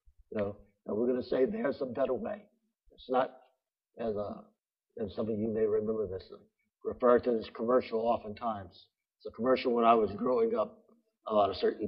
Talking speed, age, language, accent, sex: 200 wpm, 60-79, English, American, male